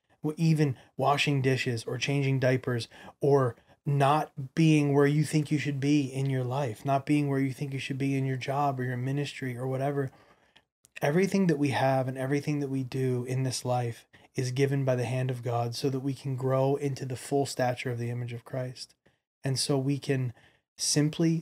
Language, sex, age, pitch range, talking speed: English, male, 20-39, 125-140 Hz, 200 wpm